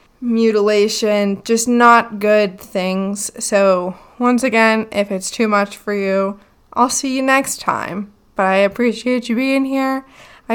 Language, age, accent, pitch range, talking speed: English, 20-39, American, 195-225 Hz, 150 wpm